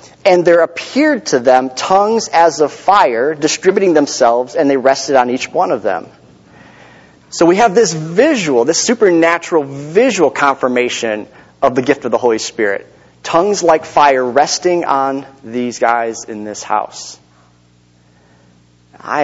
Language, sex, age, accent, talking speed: English, male, 30-49, American, 145 wpm